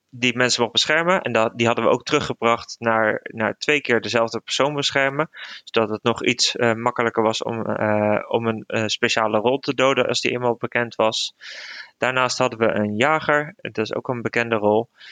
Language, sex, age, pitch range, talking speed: Dutch, male, 20-39, 110-125 Hz, 195 wpm